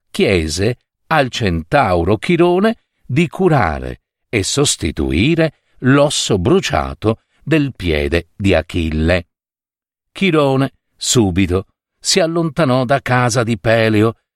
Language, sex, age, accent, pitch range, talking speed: Italian, male, 50-69, native, 85-145 Hz, 90 wpm